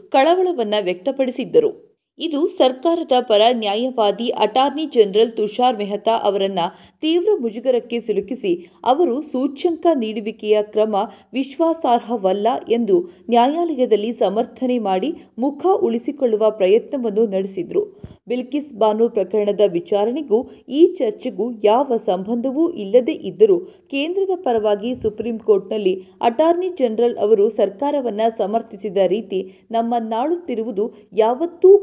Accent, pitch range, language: native, 210-280 Hz, Kannada